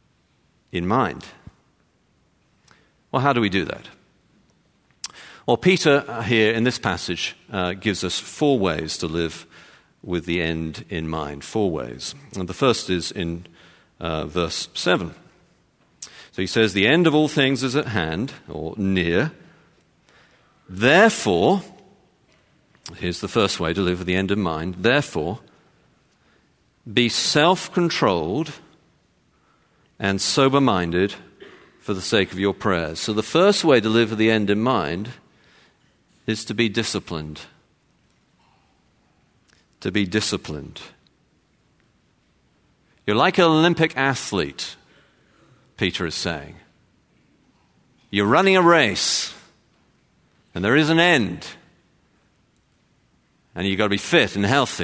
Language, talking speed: English, 125 wpm